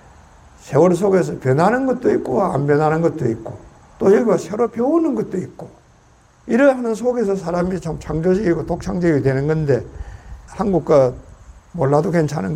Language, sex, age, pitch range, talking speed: English, male, 50-69, 125-175 Hz, 130 wpm